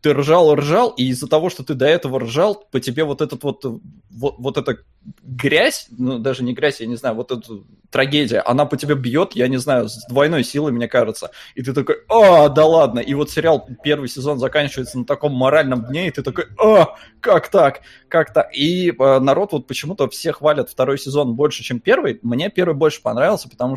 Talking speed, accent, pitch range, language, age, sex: 205 wpm, native, 120-150 Hz, Russian, 20-39, male